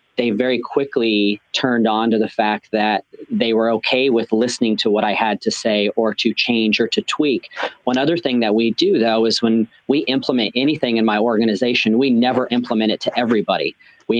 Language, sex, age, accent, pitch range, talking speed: English, male, 40-59, American, 110-120 Hz, 205 wpm